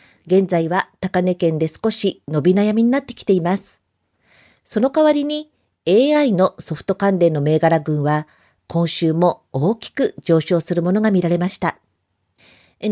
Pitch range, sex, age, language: 165-215 Hz, female, 50-69, Japanese